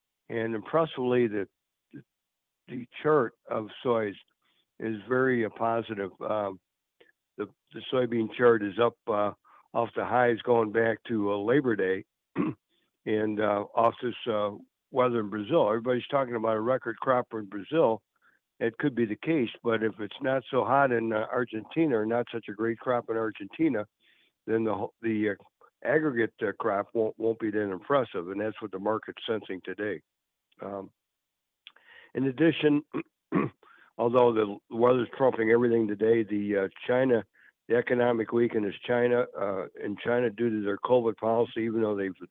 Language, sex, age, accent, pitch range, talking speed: English, male, 60-79, American, 105-120 Hz, 165 wpm